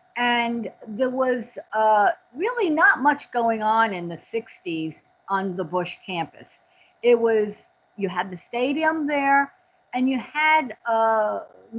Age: 50-69